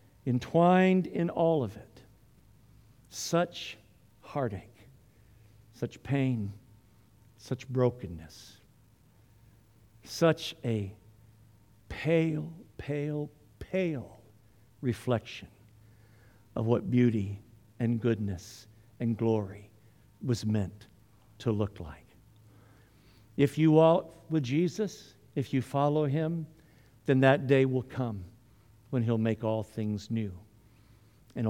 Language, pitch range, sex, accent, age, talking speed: English, 110-130 Hz, male, American, 60-79, 95 wpm